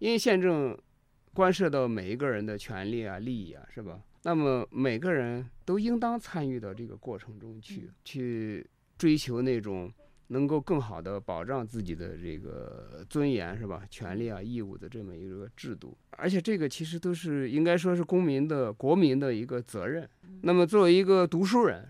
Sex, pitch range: male, 115-165 Hz